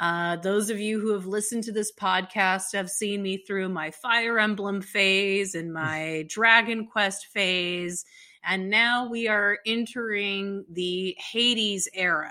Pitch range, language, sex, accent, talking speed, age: 180-210 Hz, English, female, American, 150 wpm, 30-49